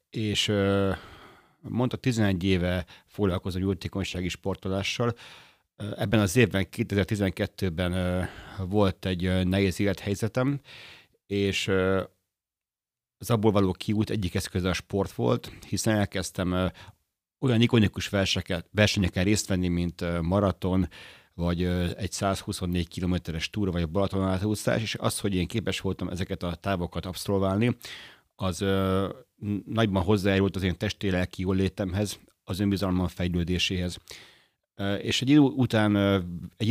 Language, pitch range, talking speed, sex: Hungarian, 95-105 Hz, 125 wpm, male